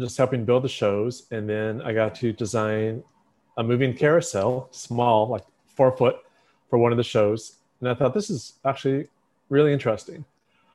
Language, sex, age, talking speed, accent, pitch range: English, male, 40-59, 165 wpm, American, 110-130 Hz